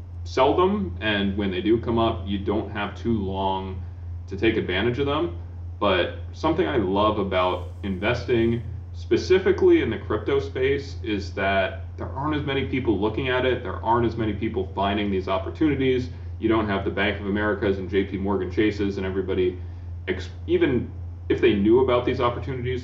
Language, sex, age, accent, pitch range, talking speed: English, male, 30-49, American, 85-105 Hz, 175 wpm